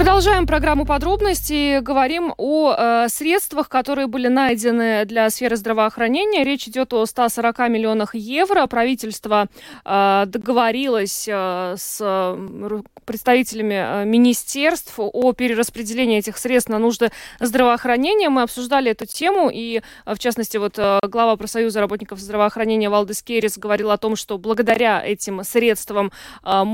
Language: Russian